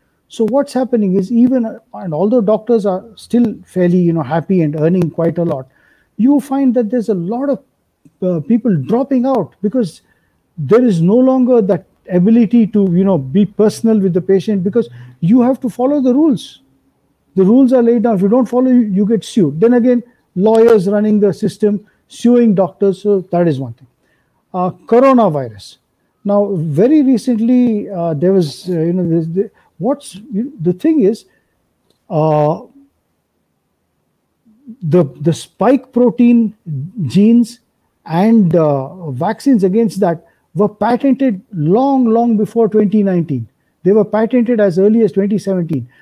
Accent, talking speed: Indian, 155 wpm